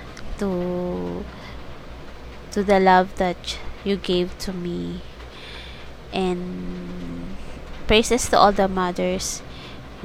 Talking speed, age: 90 wpm, 20-39